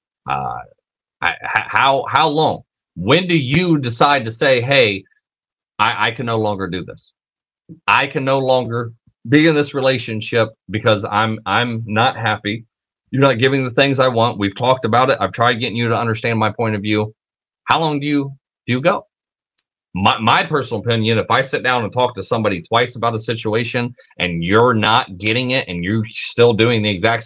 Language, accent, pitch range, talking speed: English, American, 105-130 Hz, 190 wpm